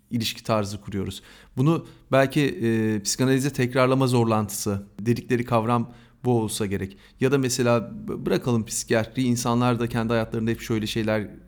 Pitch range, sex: 105-165 Hz, male